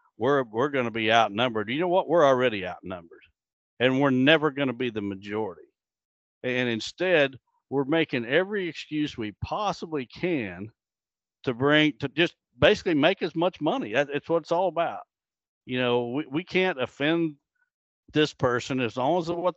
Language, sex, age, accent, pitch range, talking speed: English, male, 60-79, American, 115-160 Hz, 170 wpm